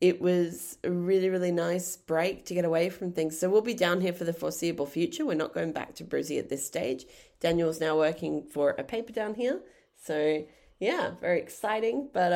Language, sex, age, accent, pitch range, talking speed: English, female, 20-39, Australian, 150-185 Hz, 210 wpm